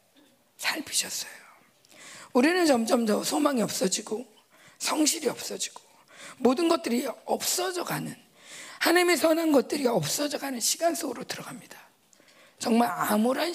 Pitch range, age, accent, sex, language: 230-320 Hz, 40-59, native, female, Korean